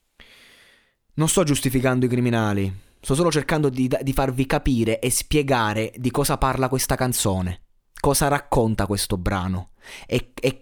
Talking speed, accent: 140 wpm, native